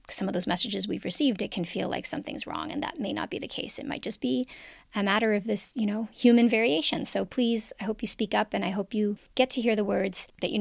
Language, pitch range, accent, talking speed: English, 190-240 Hz, American, 275 wpm